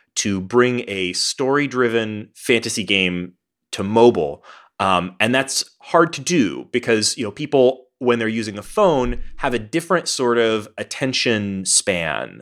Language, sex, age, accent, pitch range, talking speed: English, male, 30-49, American, 95-130 Hz, 145 wpm